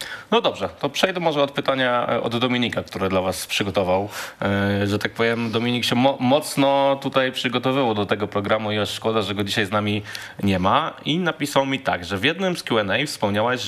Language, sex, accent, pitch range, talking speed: Polish, male, native, 100-125 Hz, 195 wpm